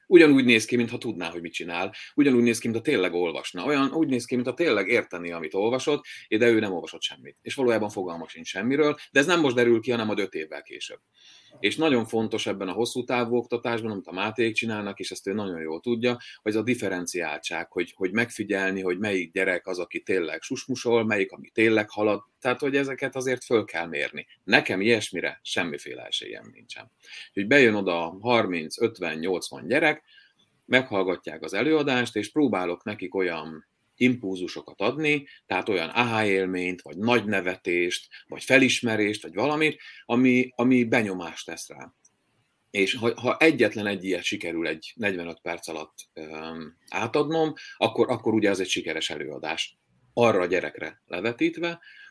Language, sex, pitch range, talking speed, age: Hungarian, male, 95-125 Hz, 170 wpm, 30-49